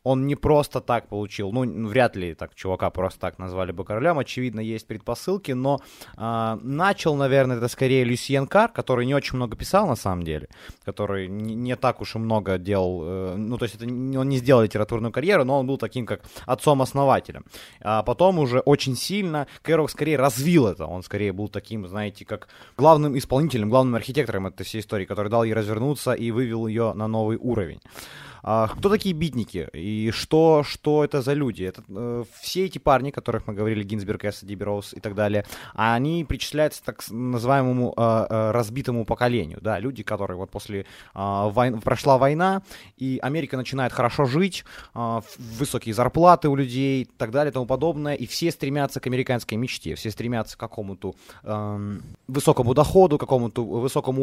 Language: Ukrainian